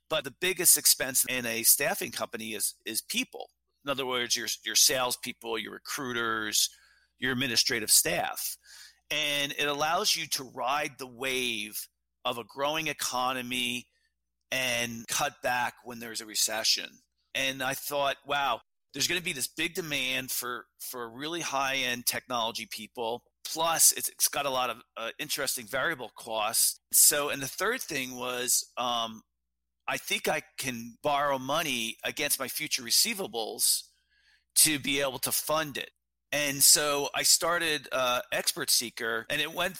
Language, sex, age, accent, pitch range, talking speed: English, male, 40-59, American, 120-150 Hz, 155 wpm